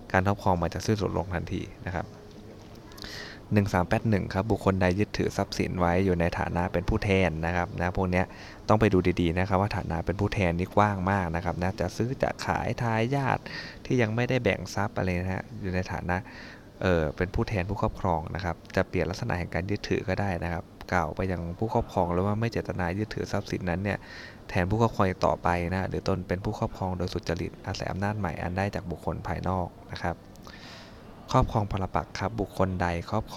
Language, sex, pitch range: Thai, male, 90-105 Hz